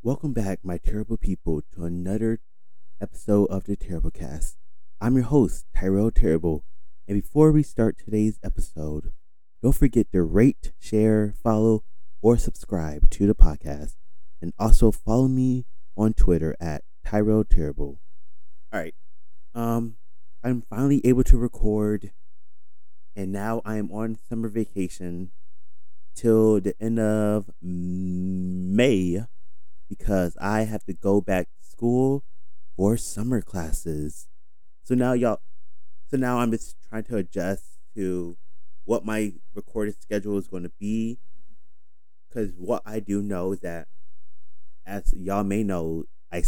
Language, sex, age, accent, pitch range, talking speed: English, male, 30-49, American, 85-110 Hz, 135 wpm